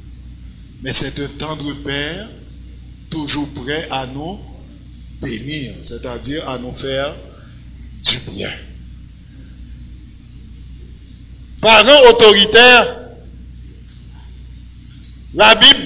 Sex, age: male, 60-79